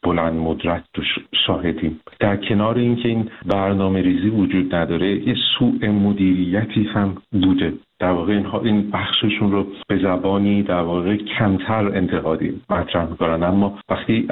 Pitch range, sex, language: 90-105 Hz, male, Persian